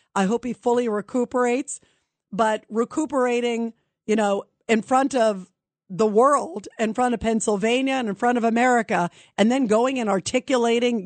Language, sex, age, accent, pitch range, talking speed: English, female, 50-69, American, 210-265 Hz, 150 wpm